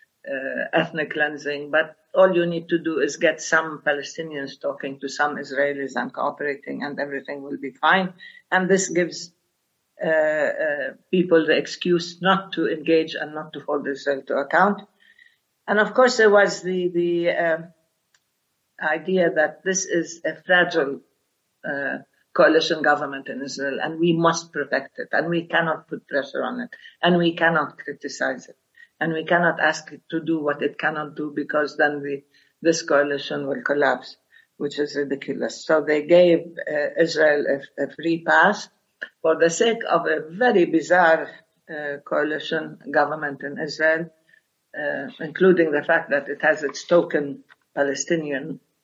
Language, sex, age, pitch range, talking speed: English, female, 50-69, 145-175 Hz, 160 wpm